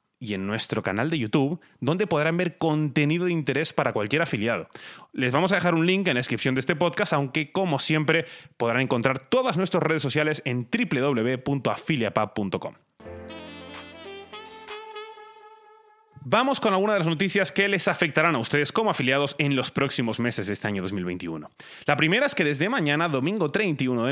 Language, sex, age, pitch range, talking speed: Spanish, male, 30-49, 135-180 Hz, 170 wpm